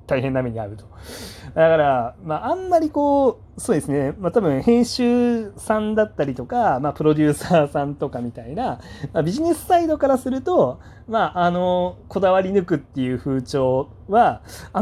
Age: 40-59